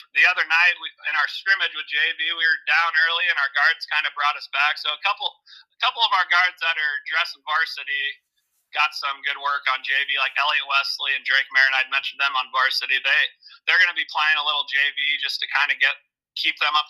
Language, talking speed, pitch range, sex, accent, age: English, 230 wpm, 140-195 Hz, male, American, 30-49